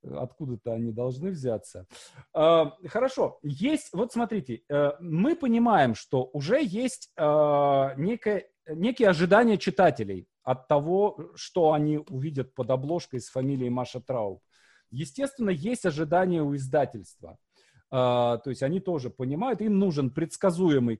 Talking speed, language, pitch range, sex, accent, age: 115 wpm, Russian, 130-190 Hz, male, native, 40-59